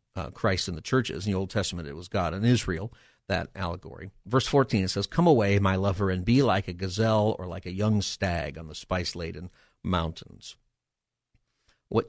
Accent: American